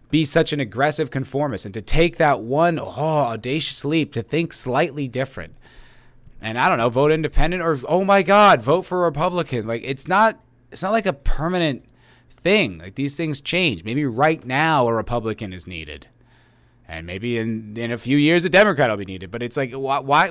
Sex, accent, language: male, American, English